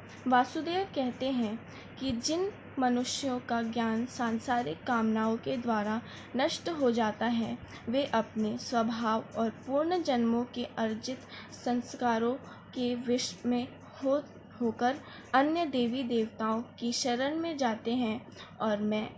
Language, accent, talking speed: Hindi, native, 125 wpm